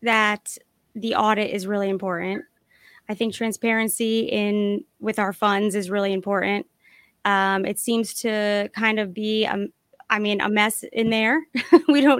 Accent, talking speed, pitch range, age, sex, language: American, 150 wpm, 195-230 Hz, 20-39, female, English